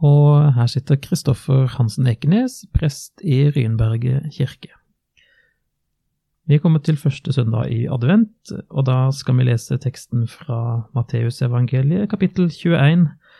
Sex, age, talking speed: male, 30-49, 125 wpm